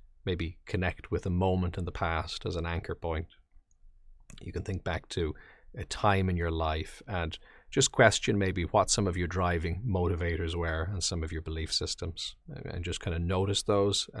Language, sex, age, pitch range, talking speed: English, male, 30-49, 80-100 Hz, 190 wpm